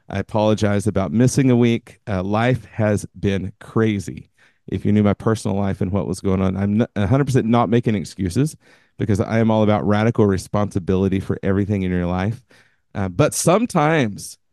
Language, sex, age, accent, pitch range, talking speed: English, male, 40-59, American, 100-120 Hz, 175 wpm